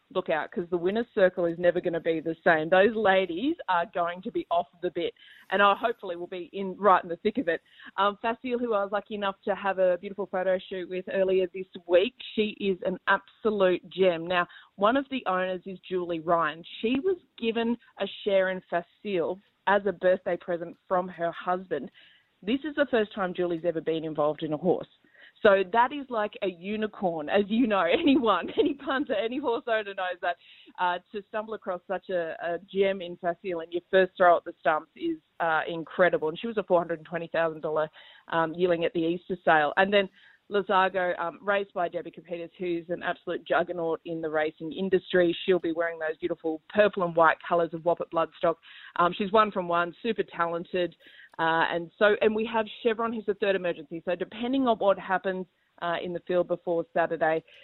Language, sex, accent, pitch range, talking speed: English, female, Australian, 170-205 Hz, 205 wpm